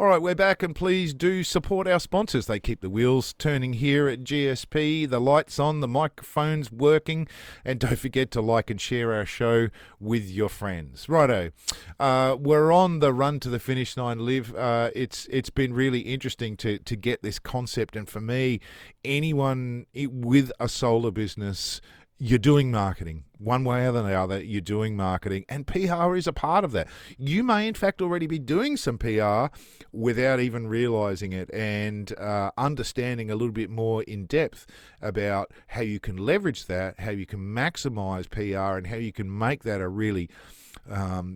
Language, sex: English, male